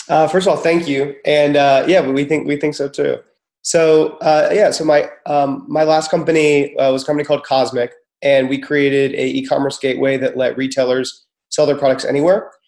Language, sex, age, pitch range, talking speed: English, male, 30-49, 130-150 Hz, 205 wpm